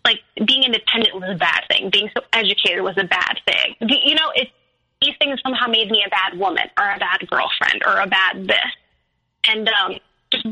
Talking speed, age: 205 wpm, 20-39